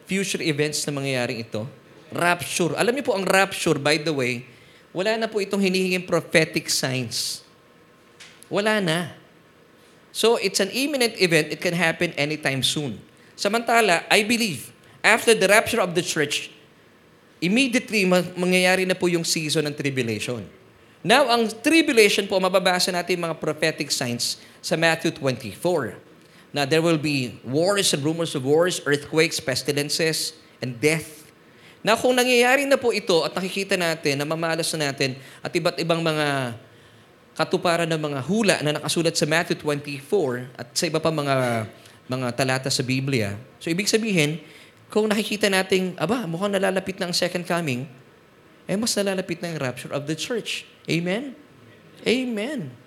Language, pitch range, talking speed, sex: English, 145-190 Hz, 150 wpm, male